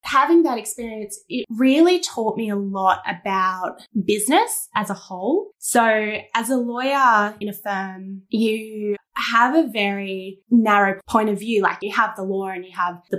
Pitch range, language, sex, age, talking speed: 195-235 Hz, English, female, 10-29, 175 wpm